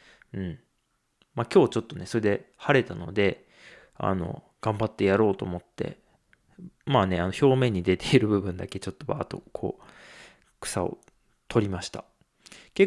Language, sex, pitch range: Japanese, male, 95-130 Hz